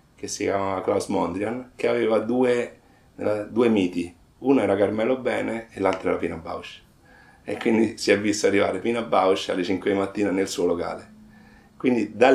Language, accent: Italian, native